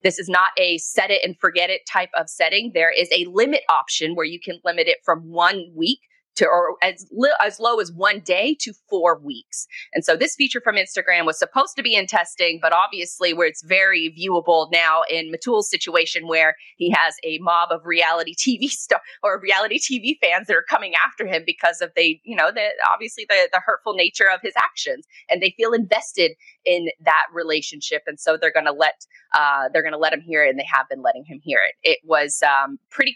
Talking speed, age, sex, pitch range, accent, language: 225 wpm, 20-39, female, 165-275 Hz, American, English